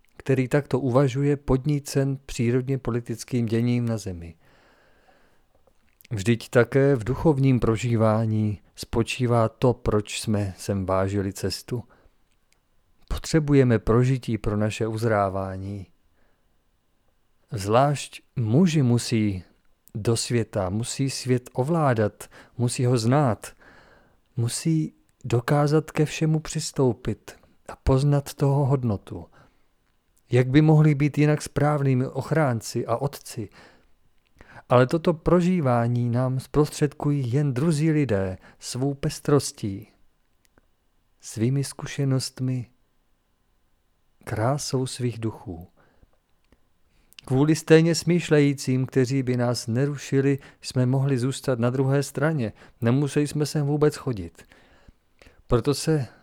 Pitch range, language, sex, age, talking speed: 110-140 Hz, Czech, male, 40-59, 95 wpm